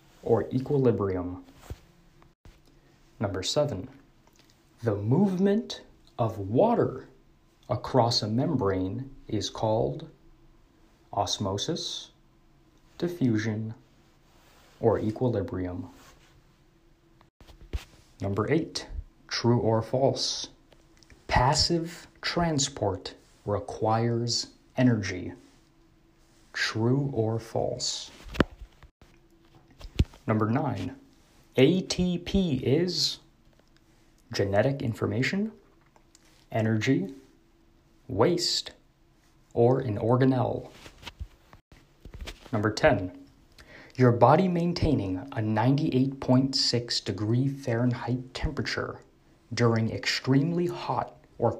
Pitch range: 110-140 Hz